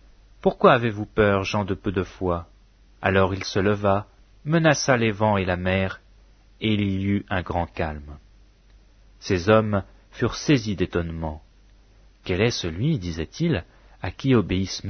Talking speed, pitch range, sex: 150 wpm, 95-125 Hz, male